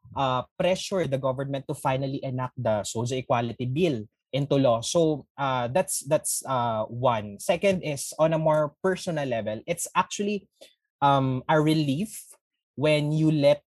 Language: English